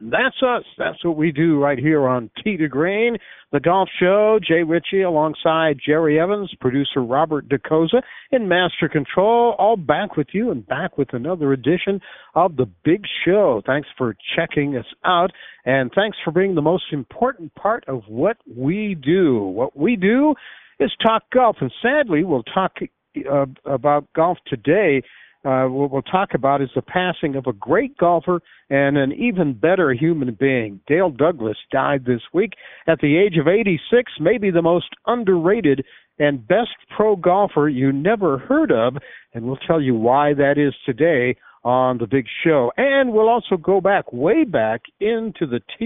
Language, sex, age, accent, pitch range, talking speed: English, male, 60-79, American, 135-195 Hz, 175 wpm